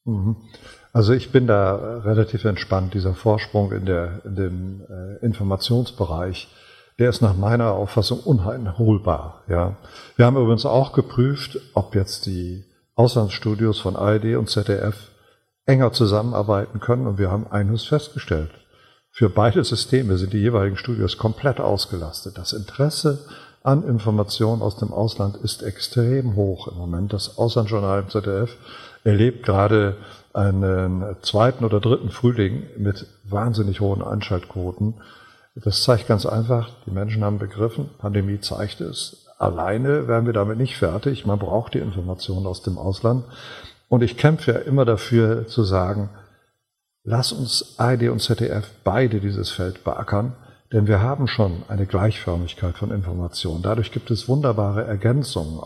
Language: German